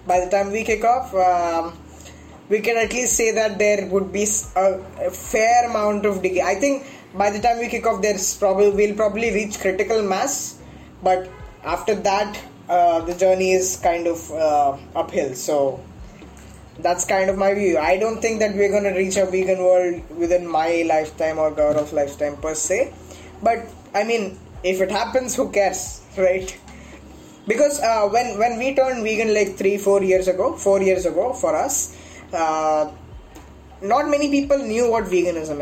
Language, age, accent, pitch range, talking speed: Hindi, 20-39, native, 180-225 Hz, 180 wpm